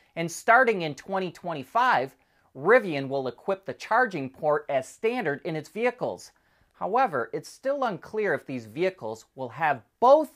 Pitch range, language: 130-200 Hz, English